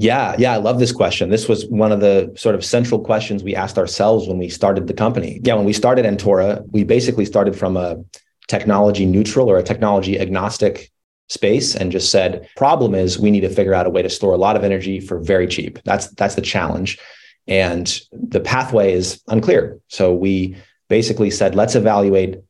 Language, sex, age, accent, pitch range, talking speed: English, male, 30-49, American, 95-110 Hz, 205 wpm